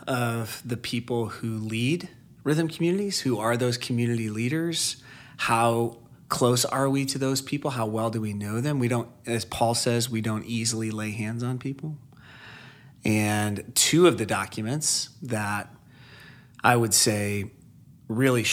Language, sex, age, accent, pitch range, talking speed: English, male, 30-49, American, 115-135 Hz, 150 wpm